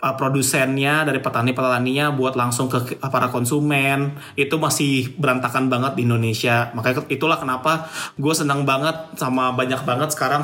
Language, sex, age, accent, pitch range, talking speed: Indonesian, male, 20-39, native, 130-155 Hz, 140 wpm